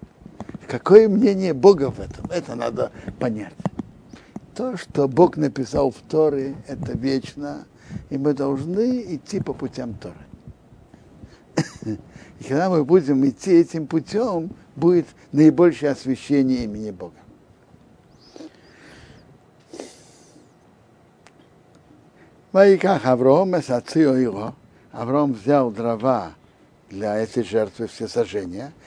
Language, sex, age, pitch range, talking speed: Russian, male, 60-79, 125-165 Hz, 100 wpm